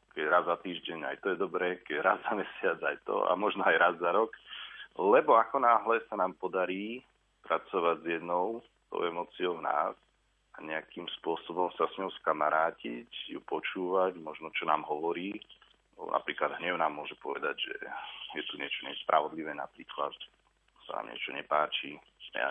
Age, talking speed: 40-59, 170 wpm